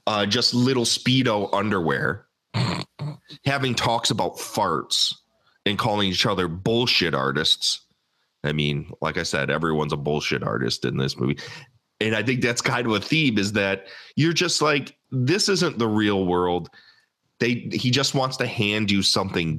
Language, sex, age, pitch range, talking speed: English, male, 30-49, 95-130 Hz, 160 wpm